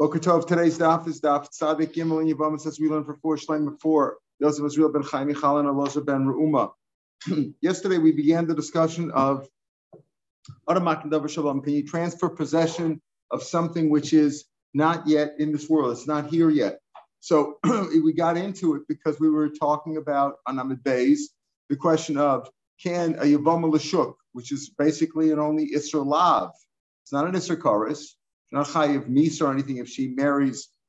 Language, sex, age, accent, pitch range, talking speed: English, male, 50-69, American, 145-165 Hz, 160 wpm